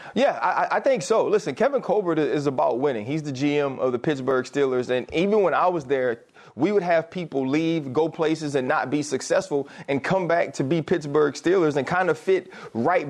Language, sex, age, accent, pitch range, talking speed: English, male, 30-49, American, 130-165 Hz, 215 wpm